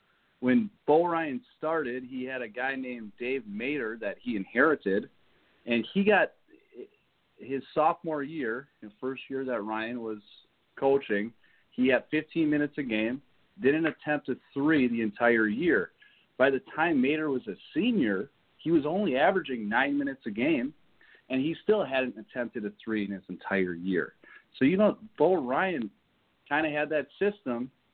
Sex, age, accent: male, 40-59, American